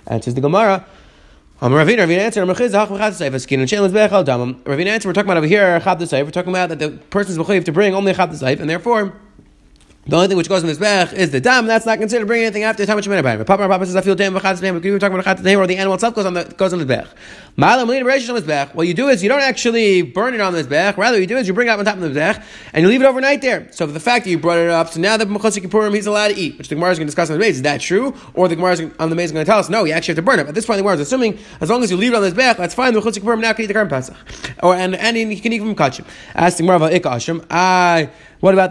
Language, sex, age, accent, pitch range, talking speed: English, male, 30-49, American, 165-210 Hz, 310 wpm